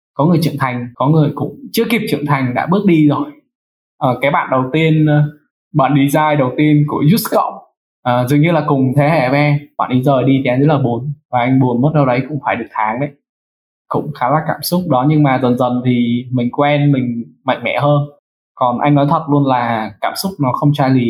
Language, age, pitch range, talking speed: Vietnamese, 10-29, 125-155 Hz, 235 wpm